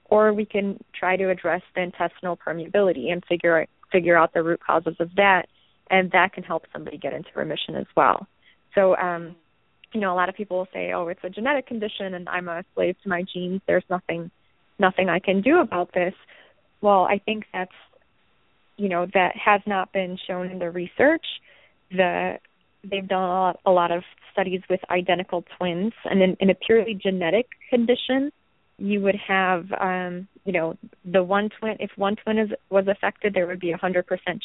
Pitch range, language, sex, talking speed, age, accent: 175-195 Hz, English, female, 190 wpm, 20-39, American